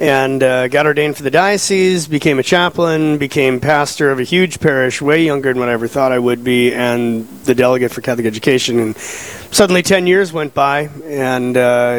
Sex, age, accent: male, 30-49, American